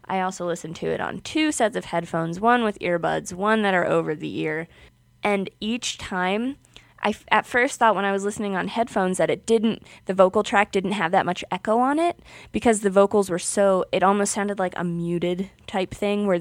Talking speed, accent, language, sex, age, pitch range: 215 wpm, American, English, female, 20-39, 180-225 Hz